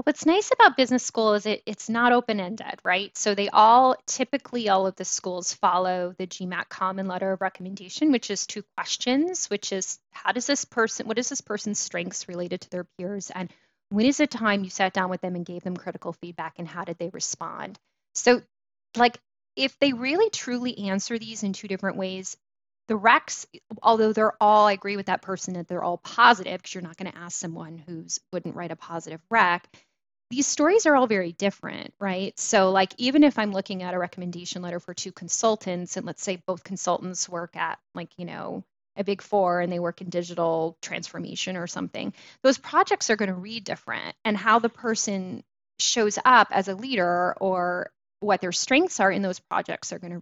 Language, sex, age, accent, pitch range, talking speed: English, female, 10-29, American, 180-230 Hz, 200 wpm